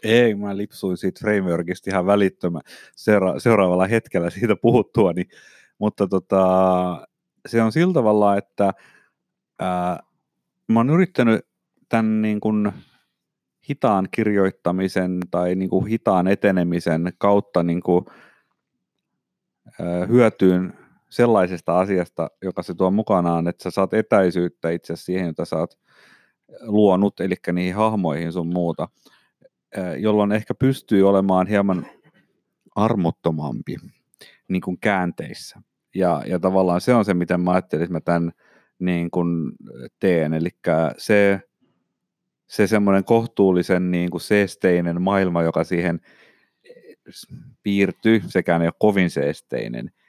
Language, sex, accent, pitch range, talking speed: Finnish, male, native, 85-100 Hz, 115 wpm